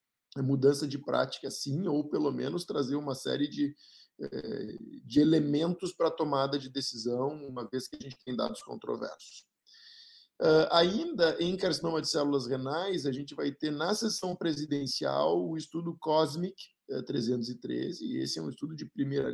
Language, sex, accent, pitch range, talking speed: Portuguese, male, Brazilian, 130-165 Hz, 155 wpm